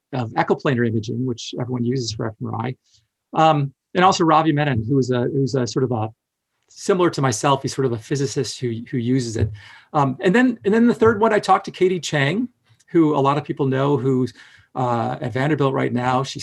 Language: English